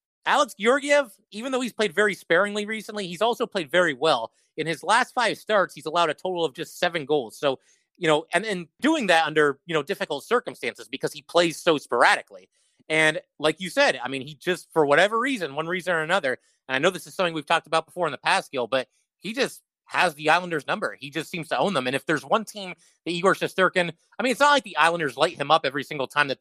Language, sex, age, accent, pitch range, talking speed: English, male, 30-49, American, 145-185 Hz, 245 wpm